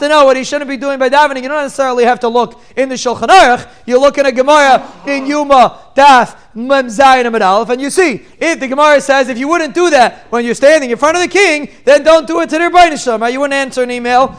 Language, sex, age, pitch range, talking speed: English, male, 30-49, 230-275 Hz, 255 wpm